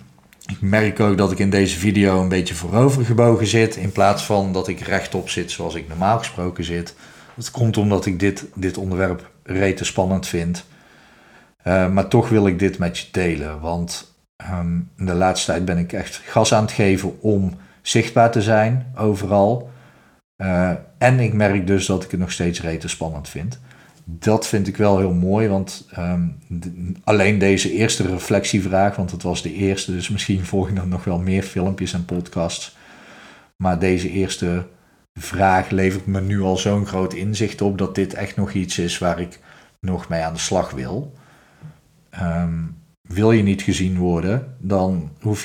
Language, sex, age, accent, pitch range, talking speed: Dutch, male, 40-59, Dutch, 90-105 Hz, 180 wpm